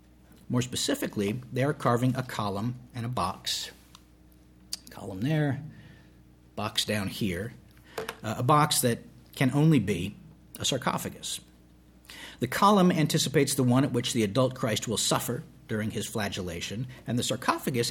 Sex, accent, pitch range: male, American, 100-135 Hz